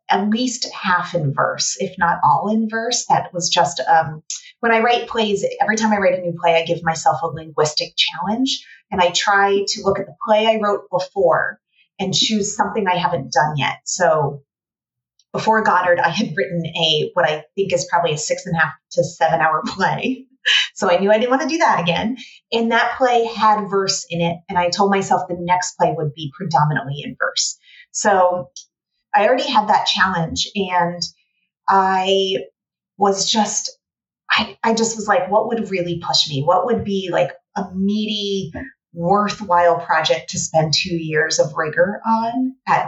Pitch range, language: 170-210 Hz, English